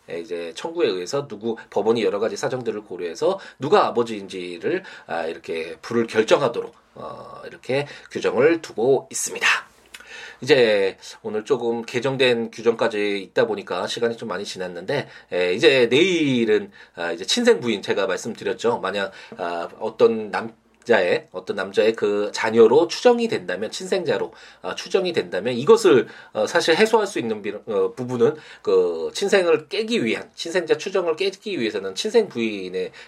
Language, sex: Korean, male